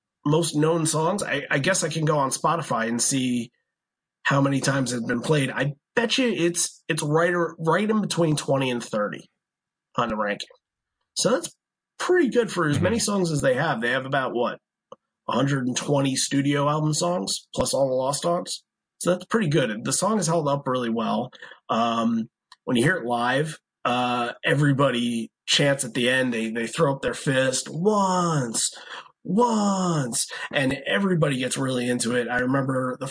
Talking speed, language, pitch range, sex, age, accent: 180 wpm, English, 125-165 Hz, male, 30-49, American